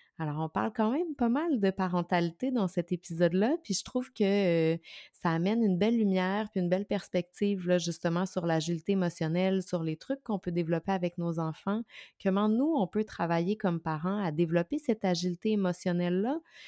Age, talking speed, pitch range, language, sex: 30-49, 185 wpm, 170-210 Hz, French, female